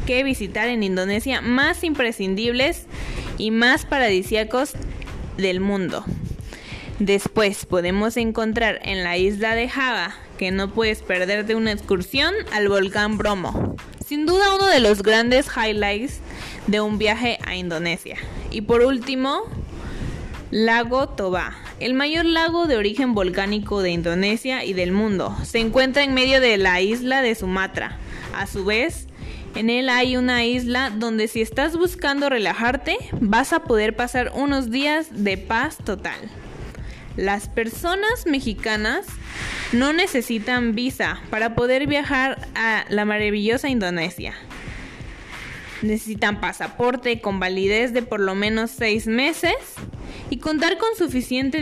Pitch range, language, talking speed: 200-260 Hz, Spanish, 135 wpm